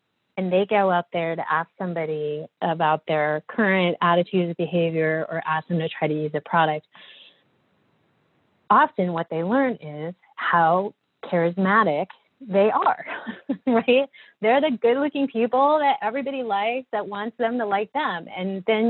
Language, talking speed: English, 150 wpm